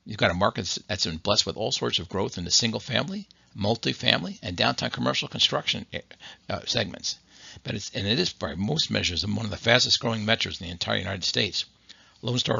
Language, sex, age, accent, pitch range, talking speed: English, male, 60-79, American, 90-115 Hz, 200 wpm